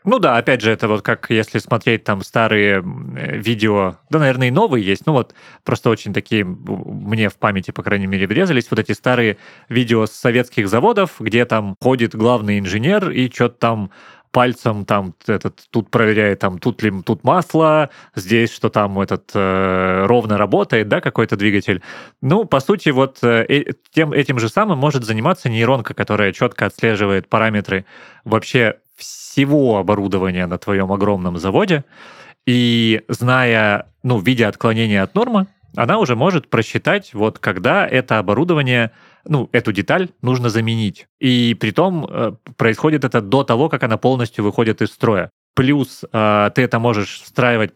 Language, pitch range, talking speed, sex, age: Russian, 105-130 Hz, 155 wpm, male, 30-49